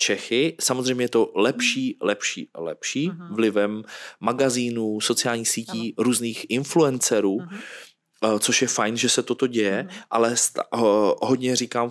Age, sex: 20-39, male